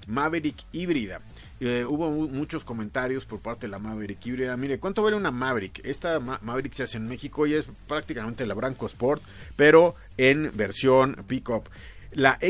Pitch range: 110-145 Hz